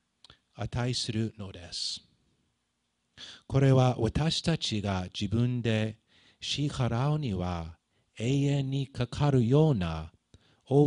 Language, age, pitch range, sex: Japanese, 50-69, 90-120 Hz, male